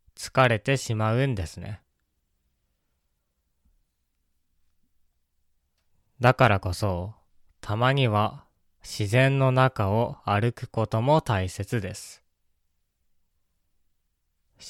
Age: 20-39